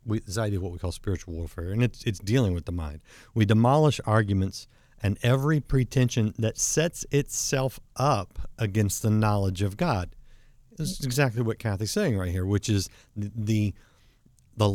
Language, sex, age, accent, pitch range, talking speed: English, male, 50-69, American, 100-120 Hz, 175 wpm